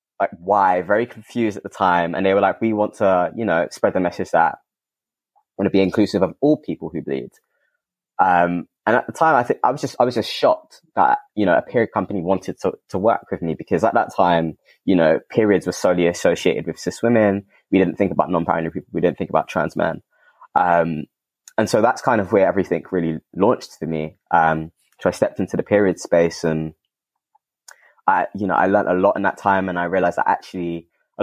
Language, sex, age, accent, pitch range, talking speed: English, male, 20-39, British, 85-100 Hz, 230 wpm